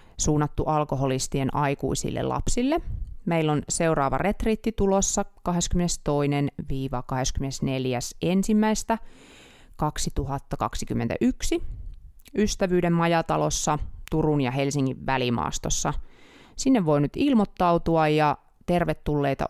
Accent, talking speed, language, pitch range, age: native, 70 wpm, Finnish, 135-175 Hz, 30-49